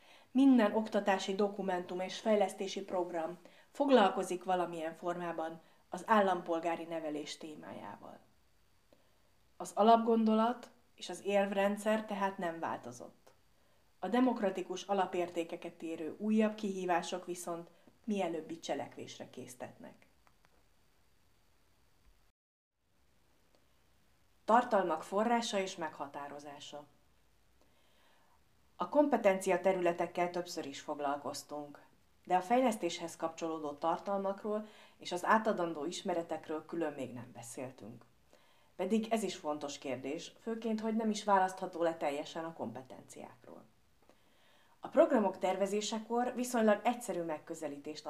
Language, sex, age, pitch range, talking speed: Hungarian, female, 30-49, 150-200 Hz, 90 wpm